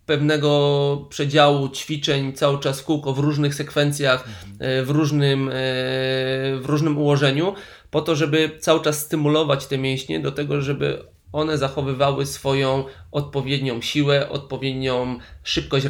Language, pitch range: Polish, 125-145 Hz